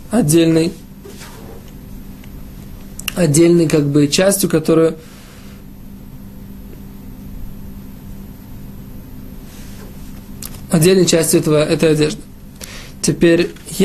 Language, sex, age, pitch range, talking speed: Russian, male, 20-39, 150-195 Hz, 50 wpm